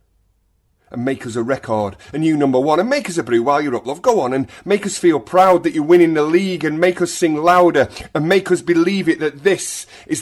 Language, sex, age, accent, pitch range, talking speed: English, male, 30-49, British, 125-175 Hz, 250 wpm